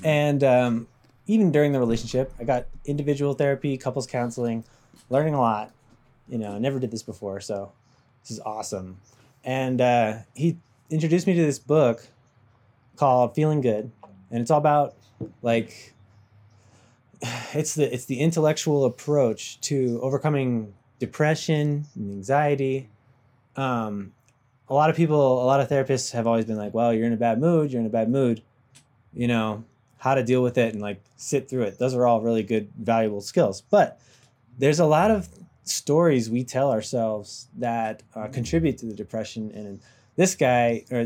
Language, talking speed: English, 170 wpm